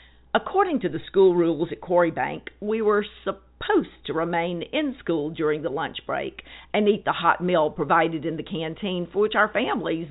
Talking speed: 185 wpm